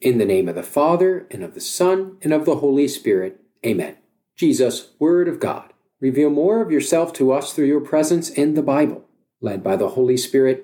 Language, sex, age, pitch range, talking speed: English, male, 50-69, 135-195 Hz, 210 wpm